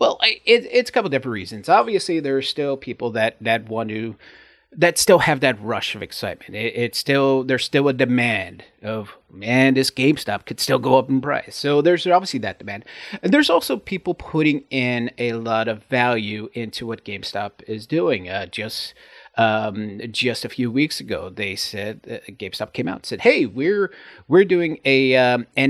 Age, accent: 30-49, American